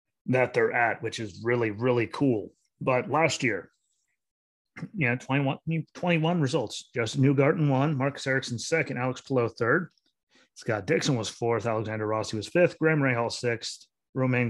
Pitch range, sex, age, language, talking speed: 115-135 Hz, male, 30-49, English, 155 wpm